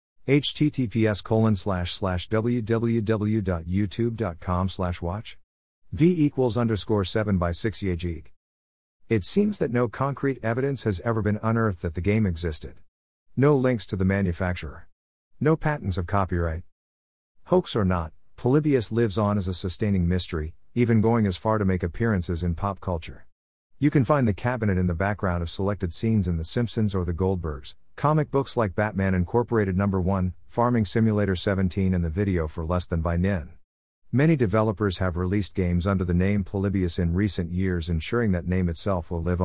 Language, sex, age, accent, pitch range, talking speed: English, male, 50-69, American, 85-115 Hz, 160 wpm